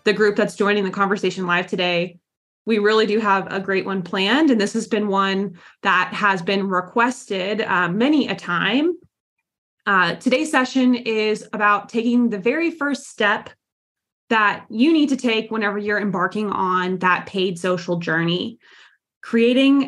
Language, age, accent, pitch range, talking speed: English, 20-39, American, 190-255 Hz, 160 wpm